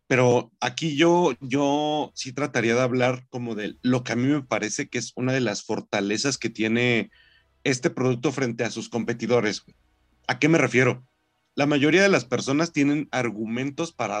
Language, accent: Spanish, Mexican